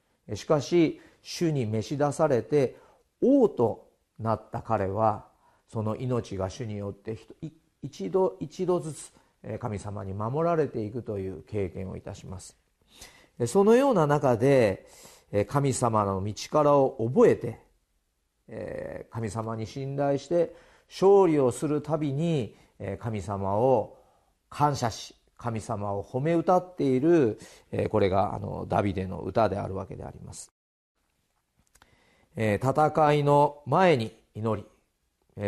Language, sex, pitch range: Japanese, male, 110-150 Hz